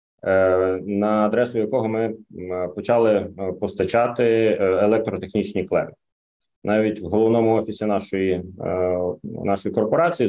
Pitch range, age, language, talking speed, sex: 95-115 Hz, 30-49, Ukrainian, 85 wpm, male